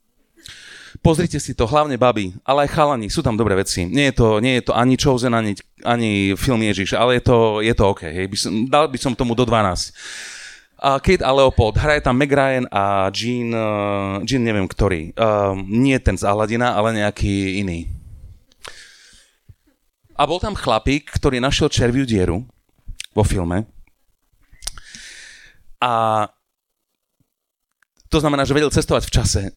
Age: 30-49